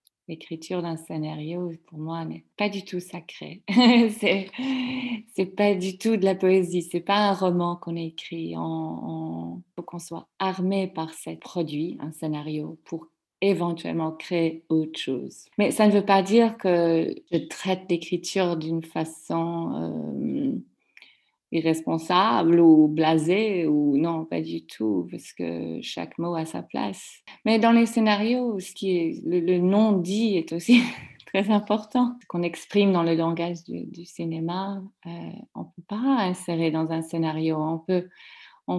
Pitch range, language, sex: 155-190 Hz, French, female